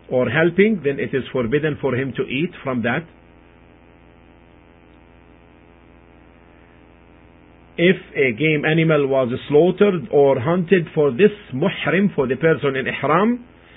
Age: 50-69